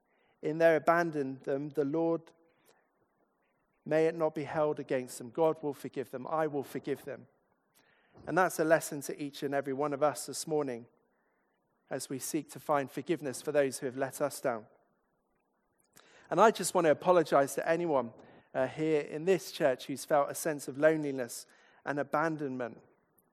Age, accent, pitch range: 40-59, British, 140-165 Hz